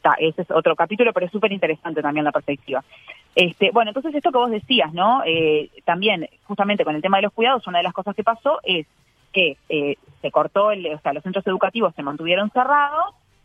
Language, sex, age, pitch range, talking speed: Spanish, female, 30-49, 155-230 Hz, 220 wpm